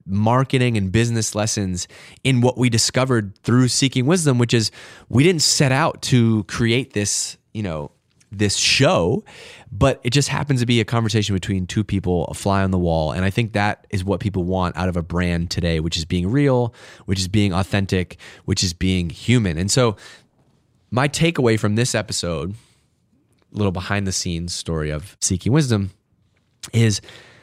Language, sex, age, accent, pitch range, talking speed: English, male, 30-49, American, 95-125 Hz, 180 wpm